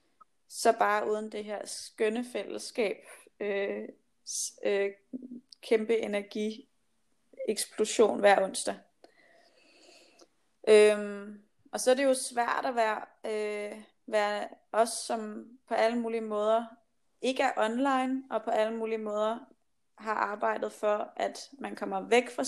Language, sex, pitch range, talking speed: Danish, female, 205-250 Hz, 125 wpm